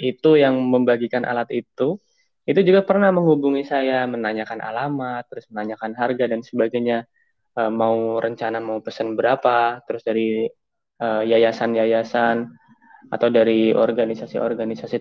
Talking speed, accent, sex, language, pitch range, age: 120 wpm, native, male, Indonesian, 115-140 Hz, 20-39